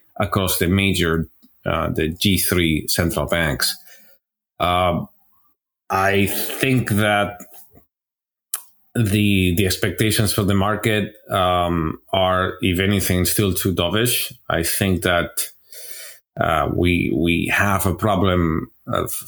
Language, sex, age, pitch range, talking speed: English, male, 30-49, 85-100 Hz, 110 wpm